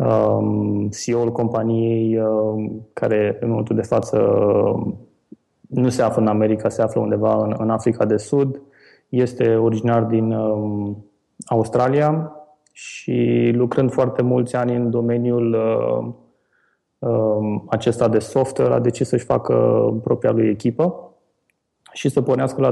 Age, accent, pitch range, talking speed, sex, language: 20-39, native, 110-125 Hz, 115 wpm, male, Romanian